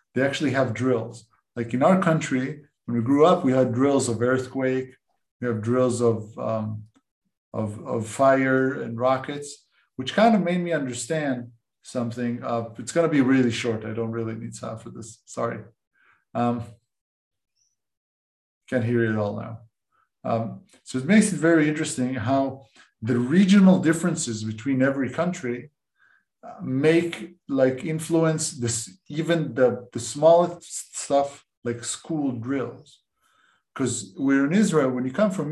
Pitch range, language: 115-145 Hz, Hebrew